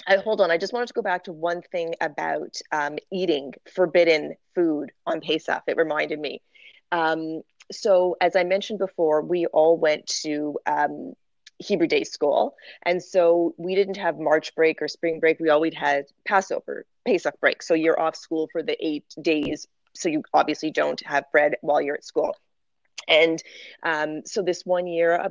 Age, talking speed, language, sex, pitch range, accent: 30-49, 185 wpm, English, female, 160-195 Hz, American